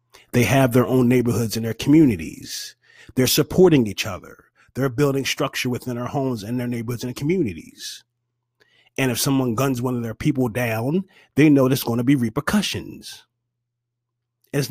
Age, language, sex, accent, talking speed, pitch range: 30-49, English, male, American, 165 wpm, 115-140 Hz